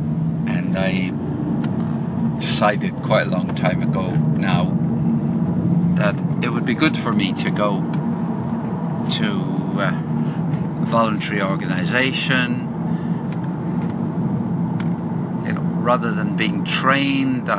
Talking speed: 90 wpm